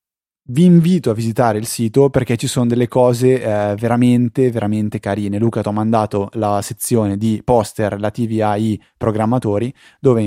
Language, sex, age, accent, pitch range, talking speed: Italian, male, 20-39, native, 105-125 Hz, 160 wpm